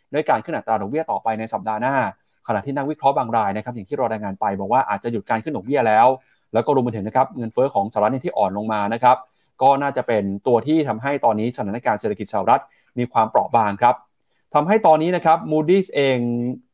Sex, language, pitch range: male, Thai, 115-160 Hz